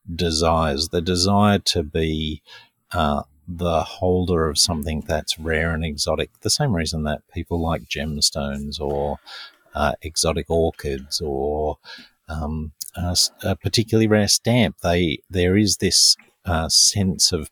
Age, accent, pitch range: 50-69, Australian, 80-95 Hz